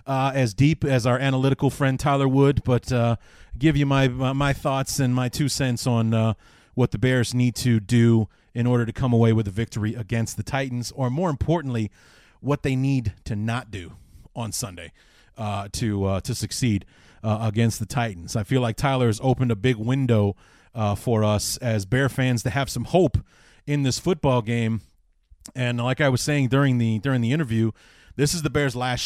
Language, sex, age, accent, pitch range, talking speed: English, male, 30-49, American, 110-135 Hz, 200 wpm